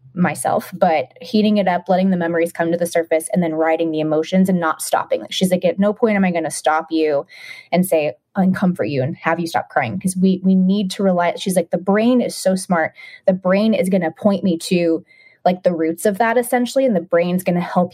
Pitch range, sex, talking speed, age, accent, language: 165-200 Hz, female, 245 wpm, 20-39, American, English